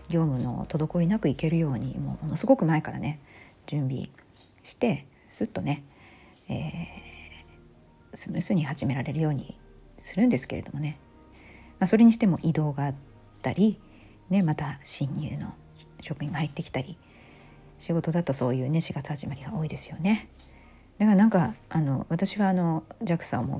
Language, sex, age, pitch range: Japanese, female, 50-69, 135-180 Hz